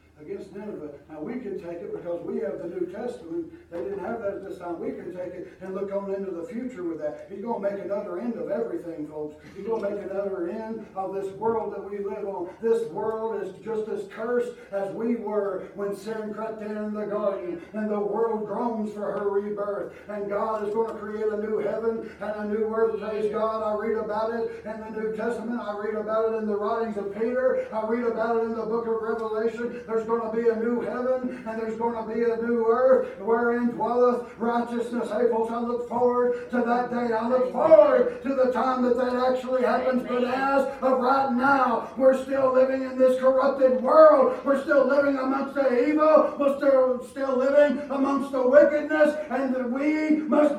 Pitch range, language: 215-270 Hz, English